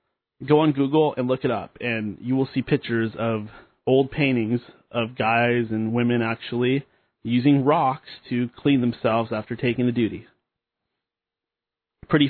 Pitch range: 115-135 Hz